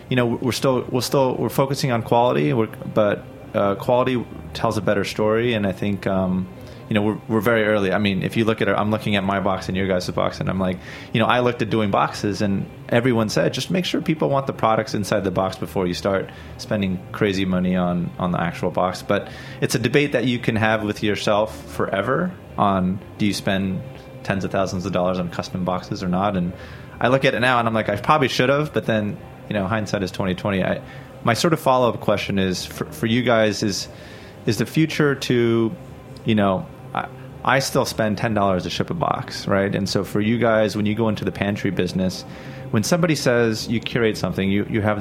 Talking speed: 230 wpm